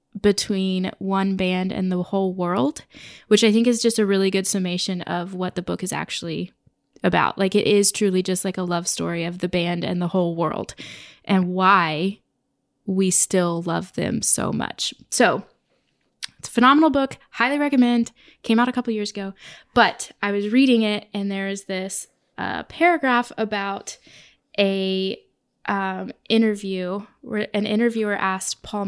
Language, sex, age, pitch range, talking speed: English, female, 20-39, 190-225 Hz, 165 wpm